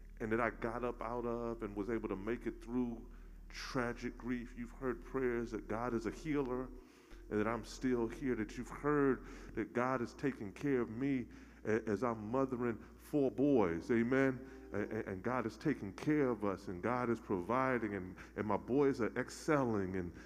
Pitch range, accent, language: 110-145 Hz, American, English